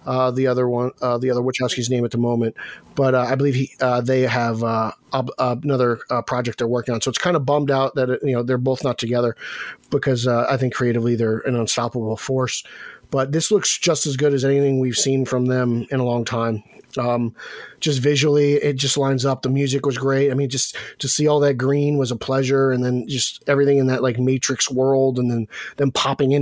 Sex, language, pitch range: male, English, 130-150 Hz